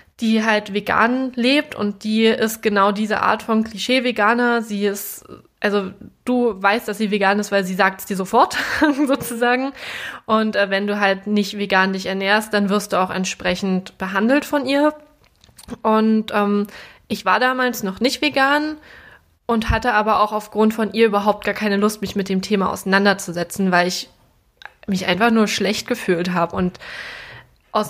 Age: 20-39